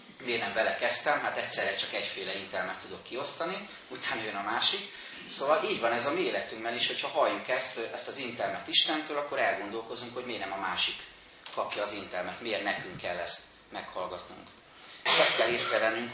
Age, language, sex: 30-49, Hungarian, male